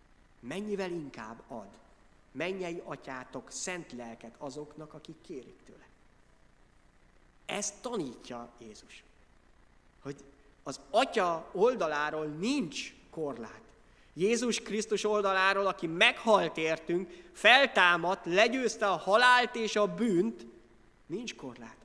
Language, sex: Hungarian, male